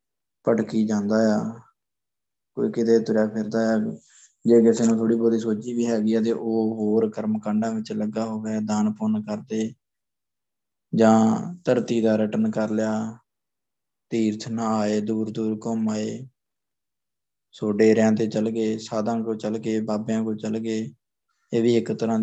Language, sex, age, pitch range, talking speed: Punjabi, male, 20-39, 110-115 Hz, 155 wpm